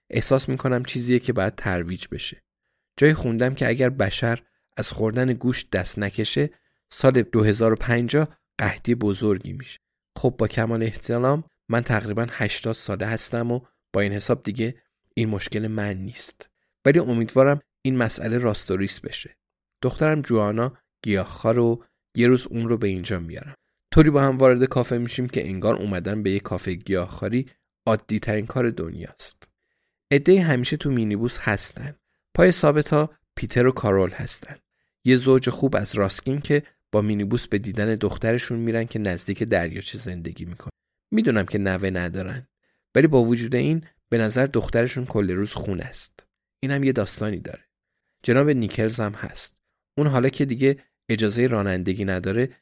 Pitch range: 105-130 Hz